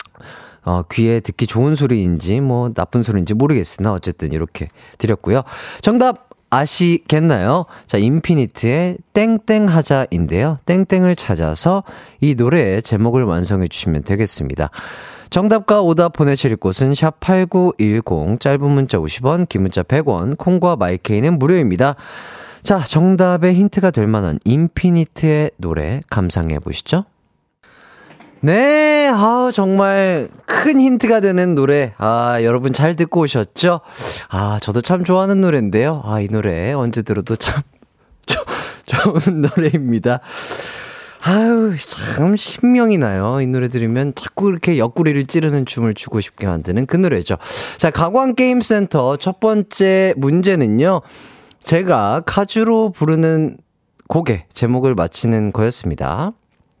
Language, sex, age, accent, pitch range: Korean, male, 30-49, native, 110-180 Hz